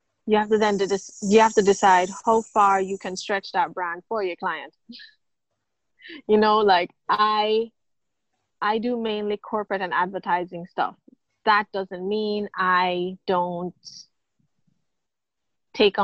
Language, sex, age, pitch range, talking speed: English, female, 20-39, 185-215 Hz, 140 wpm